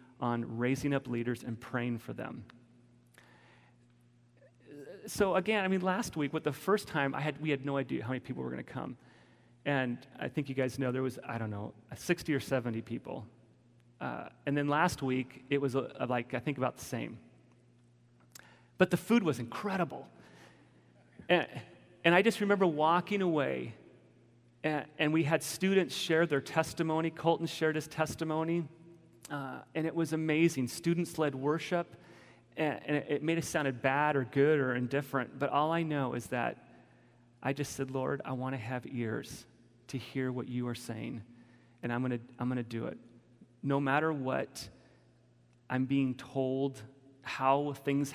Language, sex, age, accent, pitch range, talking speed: English, male, 40-59, American, 120-150 Hz, 175 wpm